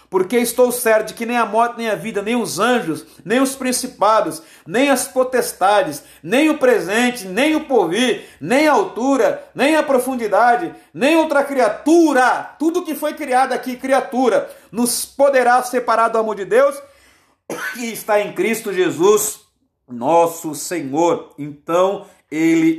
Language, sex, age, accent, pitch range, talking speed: Portuguese, male, 40-59, Brazilian, 165-255 Hz, 150 wpm